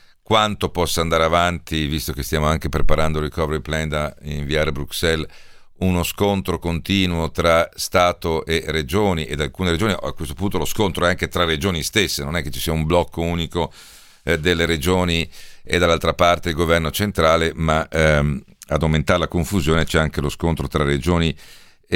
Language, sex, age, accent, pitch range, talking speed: Italian, male, 50-69, native, 80-90 Hz, 180 wpm